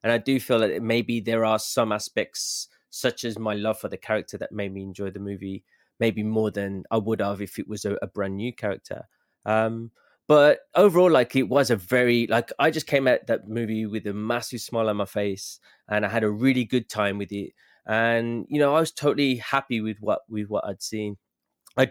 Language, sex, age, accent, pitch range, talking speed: English, male, 20-39, British, 105-125 Hz, 225 wpm